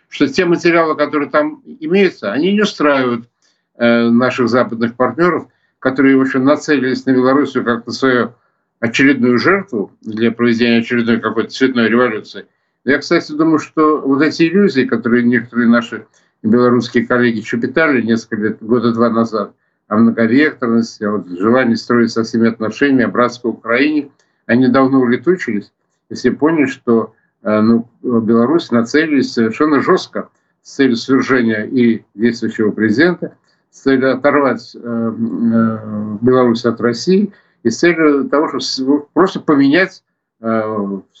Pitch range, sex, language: 115-145 Hz, male, Russian